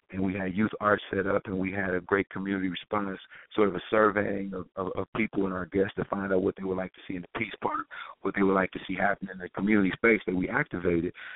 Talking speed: 275 wpm